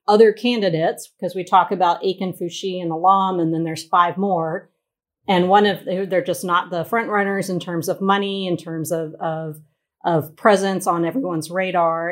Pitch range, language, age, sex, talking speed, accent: 170-200 Hz, English, 40-59, female, 185 wpm, American